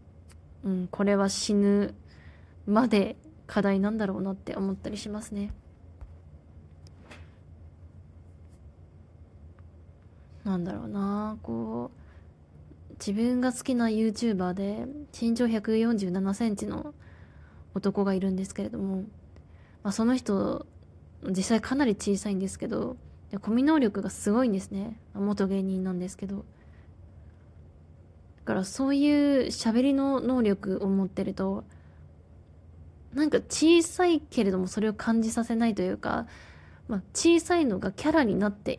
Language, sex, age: Japanese, female, 20-39